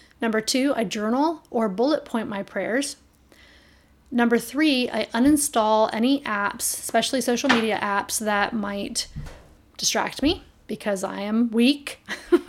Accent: American